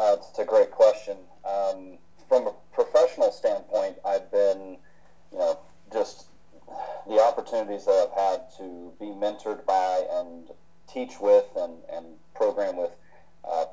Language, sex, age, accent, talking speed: English, male, 30-49, American, 140 wpm